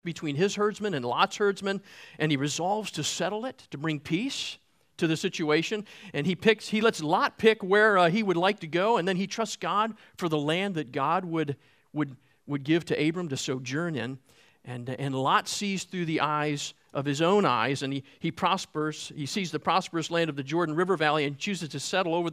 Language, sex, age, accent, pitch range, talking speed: English, male, 50-69, American, 150-215 Hz, 220 wpm